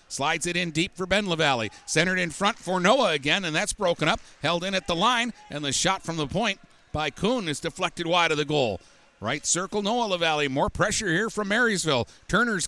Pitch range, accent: 150-205 Hz, American